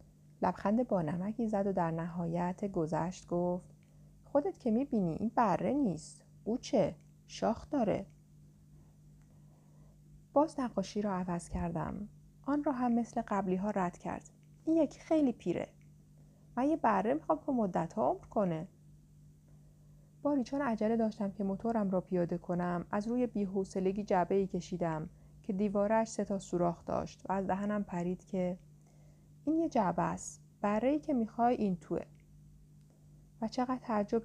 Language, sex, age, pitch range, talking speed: Persian, female, 30-49, 155-230 Hz, 140 wpm